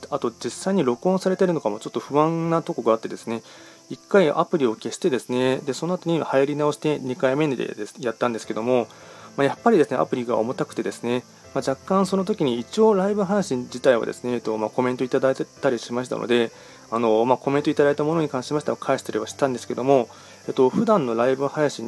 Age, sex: 20-39, male